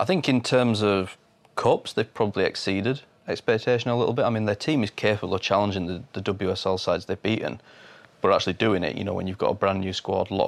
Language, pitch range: English, 95-110 Hz